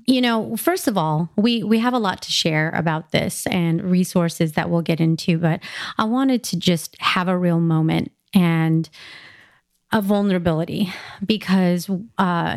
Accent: American